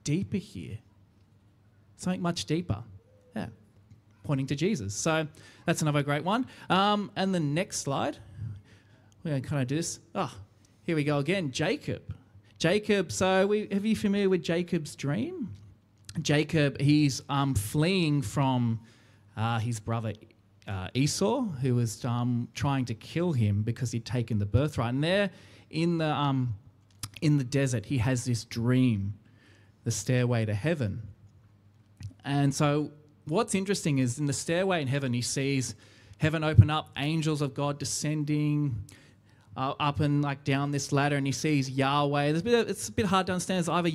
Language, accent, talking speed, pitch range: English, Australian, 165 wpm, 110-150 Hz